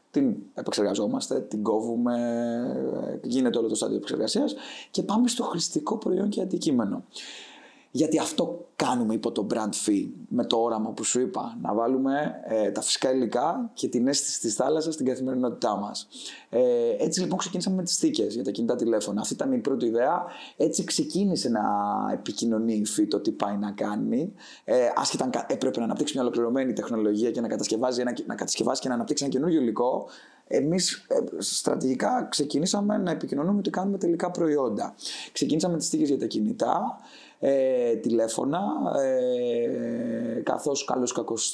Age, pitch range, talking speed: 20-39, 110-170 Hz, 160 wpm